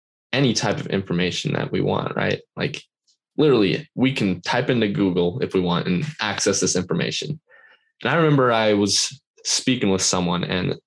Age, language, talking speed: 10-29, English, 170 wpm